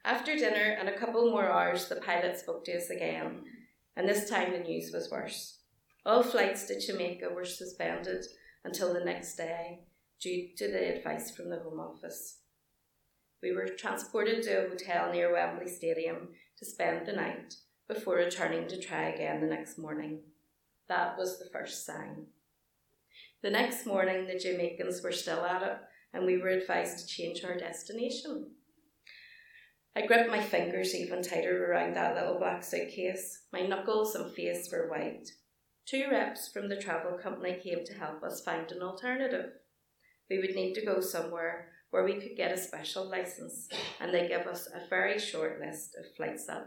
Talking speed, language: 175 wpm, English